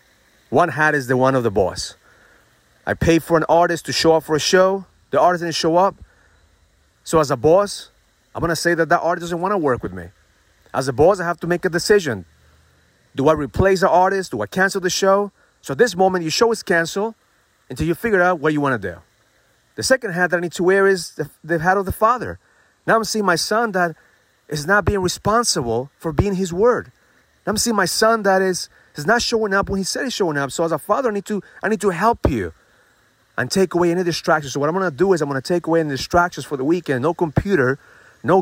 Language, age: English, 30-49